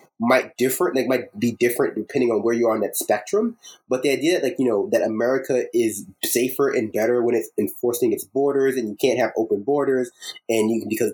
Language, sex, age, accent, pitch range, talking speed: English, male, 20-39, American, 115-165 Hz, 220 wpm